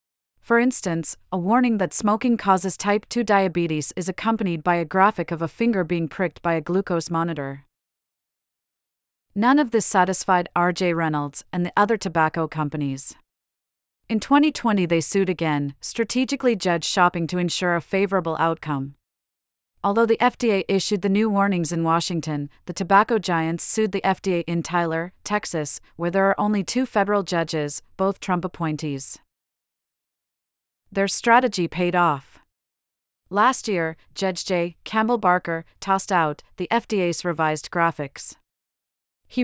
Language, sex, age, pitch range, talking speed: English, female, 40-59, 165-200 Hz, 140 wpm